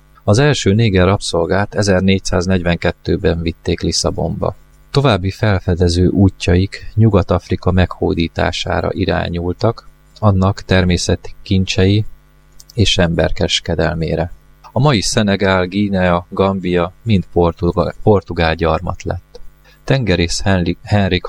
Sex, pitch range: male, 85-100 Hz